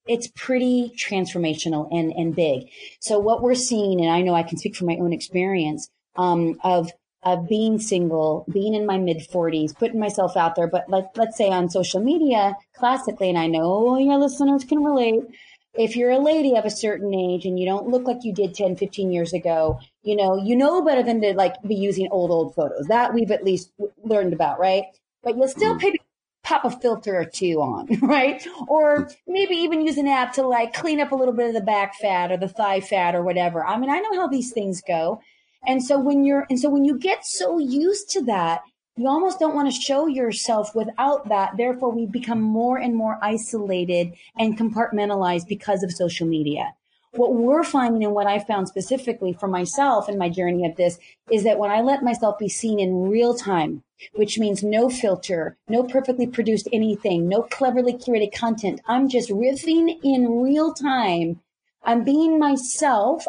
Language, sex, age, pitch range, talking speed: English, female, 30-49, 185-260 Hz, 200 wpm